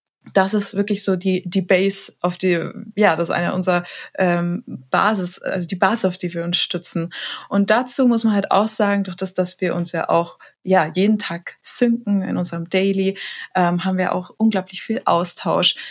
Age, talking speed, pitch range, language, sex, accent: 20-39, 195 wpm, 175-200 Hz, German, female, German